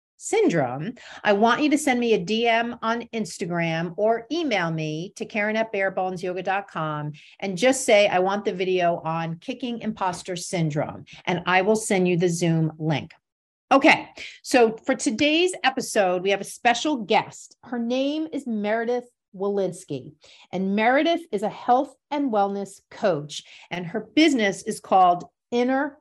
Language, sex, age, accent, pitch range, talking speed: English, female, 40-59, American, 190-260 Hz, 150 wpm